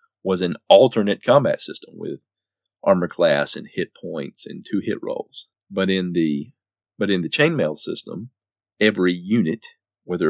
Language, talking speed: English, 150 wpm